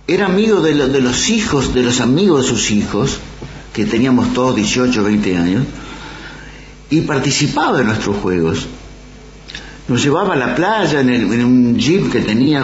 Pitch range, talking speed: 125-175 Hz, 175 wpm